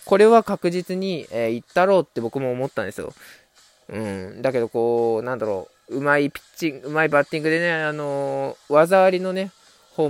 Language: Japanese